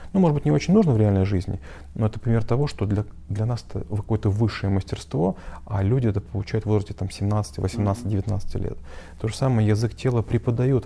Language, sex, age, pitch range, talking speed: Russian, male, 30-49, 95-110 Hz, 210 wpm